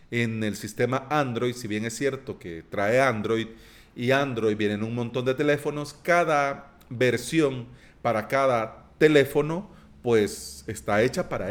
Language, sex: Spanish, male